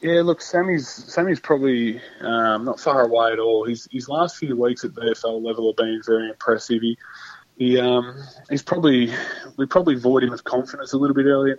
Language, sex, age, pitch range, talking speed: English, male, 20-39, 115-125 Hz, 205 wpm